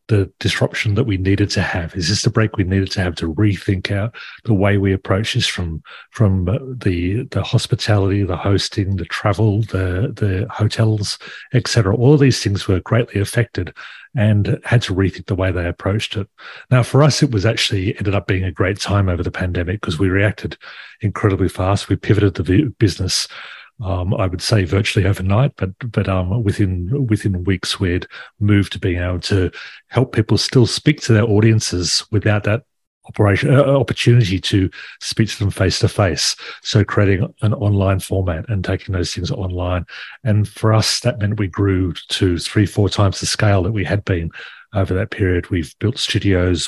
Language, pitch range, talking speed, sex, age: English, 95-110 Hz, 190 wpm, male, 40-59